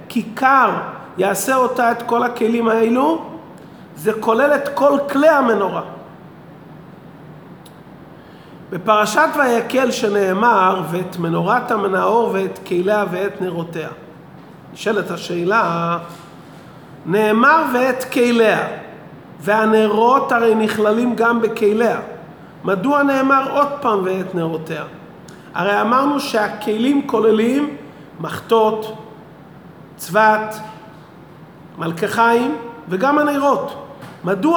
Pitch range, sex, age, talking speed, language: 185-245 Hz, male, 40-59, 85 wpm, Hebrew